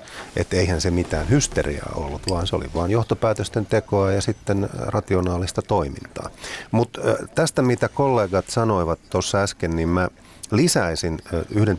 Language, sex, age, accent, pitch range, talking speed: Finnish, male, 30-49, native, 80-100 Hz, 135 wpm